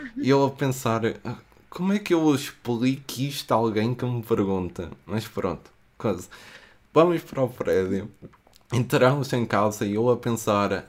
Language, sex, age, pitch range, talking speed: Portuguese, male, 20-39, 105-130 Hz, 160 wpm